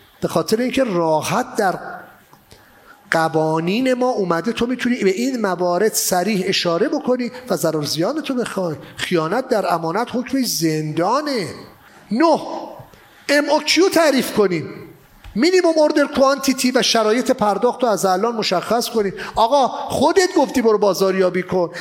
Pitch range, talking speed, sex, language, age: 200-280 Hz, 130 wpm, male, English, 40-59